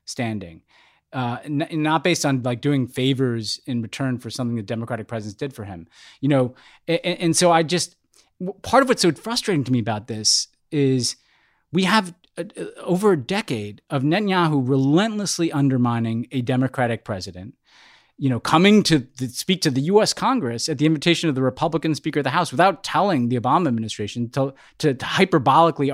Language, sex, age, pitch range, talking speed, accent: English, male, 30-49, 125-175 Hz, 180 wpm, American